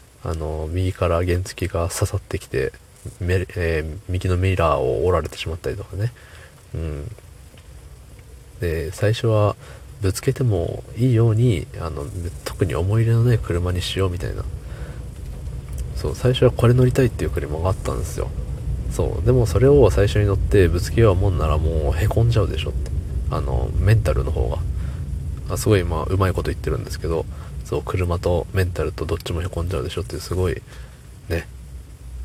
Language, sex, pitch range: Japanese, male, 80-105 Hz